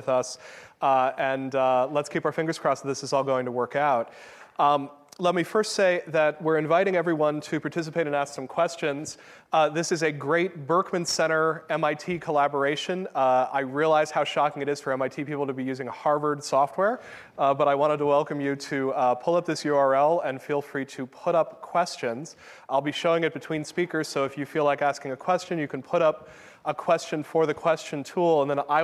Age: 30-49